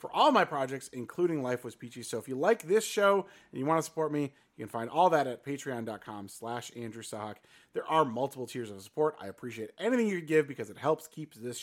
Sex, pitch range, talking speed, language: male, 115-155 Hz, 240 wpm, English